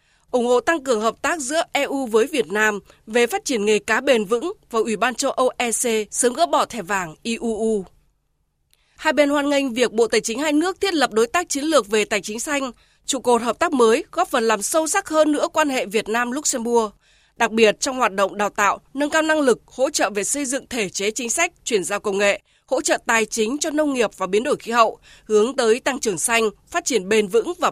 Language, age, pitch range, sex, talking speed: Vietnamese, 20-39, 215-285 Hz, female, 240 wpm